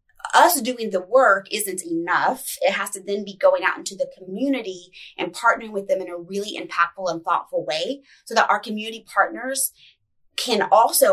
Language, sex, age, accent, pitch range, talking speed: English, female, 20-39, American, 185-245 Hz, 185 wpm